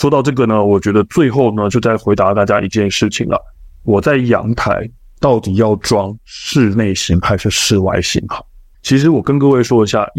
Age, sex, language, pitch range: 50-69, male, Chinese, 100-130 Hz